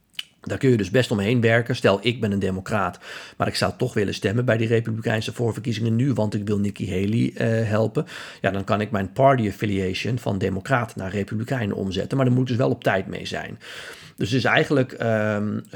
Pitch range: 100-125 Hz